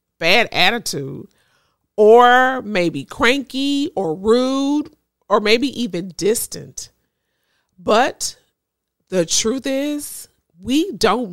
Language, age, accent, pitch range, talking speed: English, 40-59, American, 190-275 Hz, 90 wpm